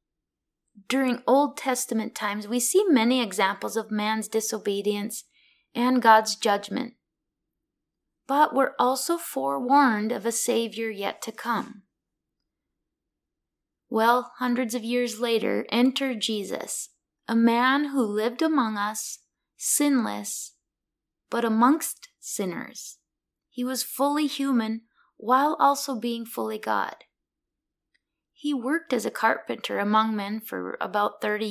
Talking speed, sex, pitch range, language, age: 115 wpm, female, 220-255 Hz, English, 20-39